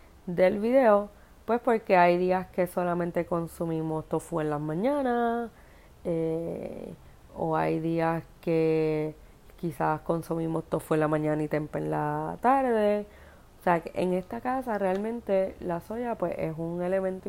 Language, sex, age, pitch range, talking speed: Spanish, female, 30-49, 160-200 Hz, 145 wpm